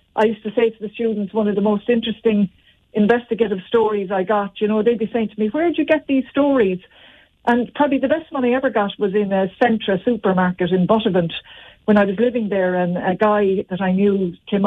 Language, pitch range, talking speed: English, 190-235 Hz, 230 wpm